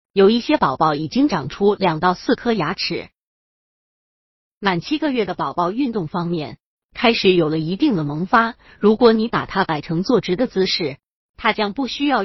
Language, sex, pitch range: Chinese, female, 170-235 Hz